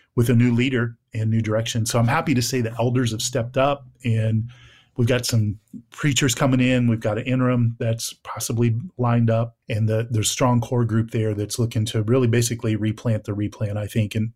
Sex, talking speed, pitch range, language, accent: male, 210 wpm, 110-125 Hz, English, American